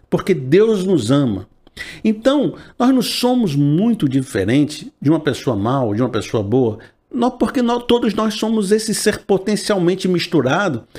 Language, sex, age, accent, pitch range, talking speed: Portuguese, male, 50-69, Brazilian, 135-195 Hz, 155 wpm